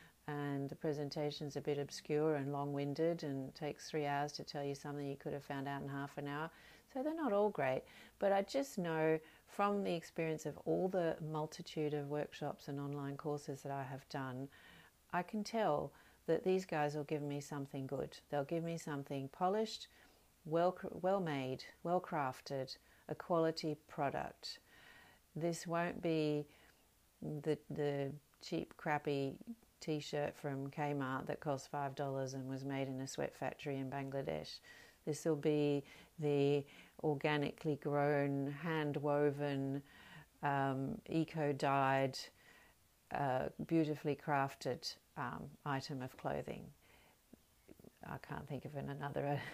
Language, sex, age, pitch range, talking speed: English, female, 50-69, 140-160 Hz, 140 wpm